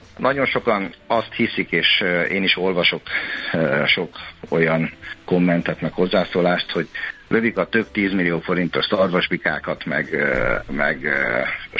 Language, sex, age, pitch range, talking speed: Hungarian, male, 50-69, 85-95 Hz, 105 wpm